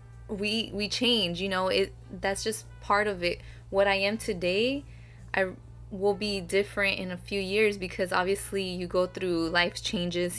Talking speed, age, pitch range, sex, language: 175 wpm, 20-39, 170-195 Hz, female, English